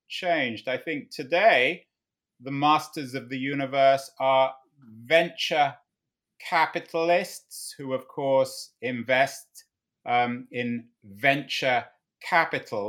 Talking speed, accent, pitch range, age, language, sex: 95 wpm, British, 110-140 Hz, 30-49, English, male